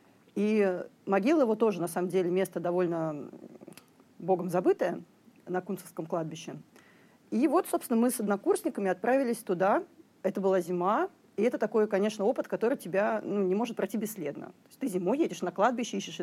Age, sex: 30-49, female